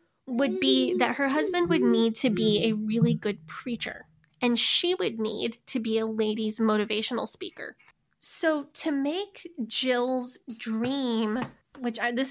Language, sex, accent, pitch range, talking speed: English, female, American, 225-275 Hz, 145 wpm